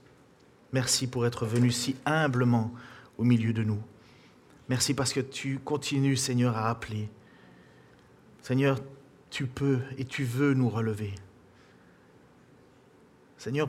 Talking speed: 120 wpm